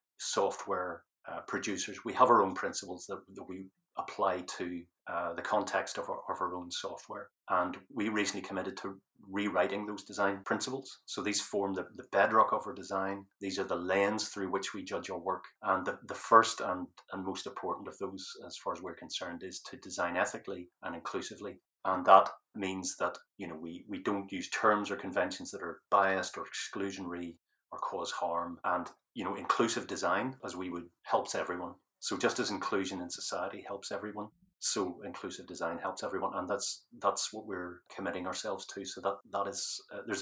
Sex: male